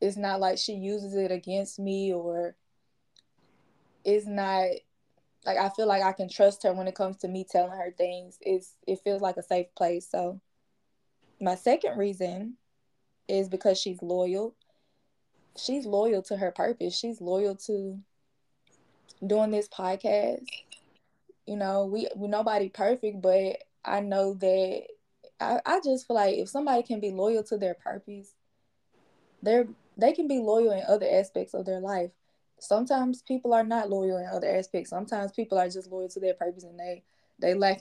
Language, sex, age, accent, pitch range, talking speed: English, female, 20-39, American, 185-220 Hz, 170 wpm